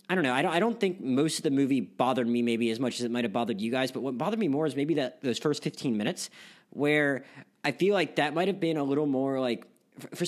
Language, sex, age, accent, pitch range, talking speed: English, male, 20-39, American, 125-155 Hz, 285 wpm